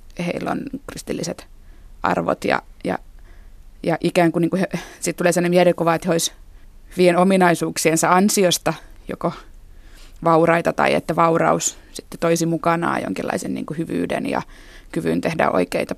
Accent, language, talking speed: native, Finnish, 130 wpm